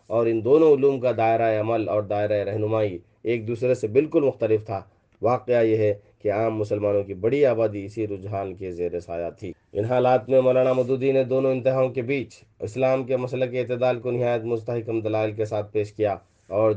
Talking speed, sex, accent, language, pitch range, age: 195 wpm, male, Indian, English, 105-125 Hz, 40-59